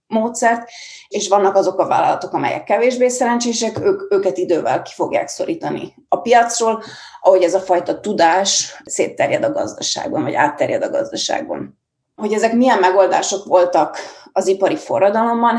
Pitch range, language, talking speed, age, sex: 185-220 Hz, Hungarian, 140 wpm, 30-49, female